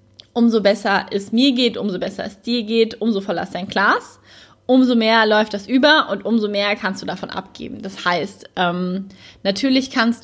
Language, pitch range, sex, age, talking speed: German, 190-225 Hz, female, 20-39, 190 wpm